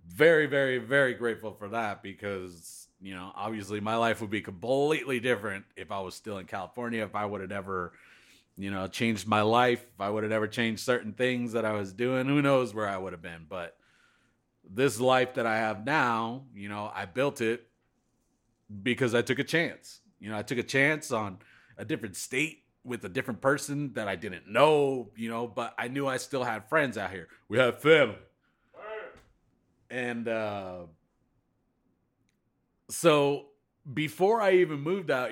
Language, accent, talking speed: English, American, 185 wpm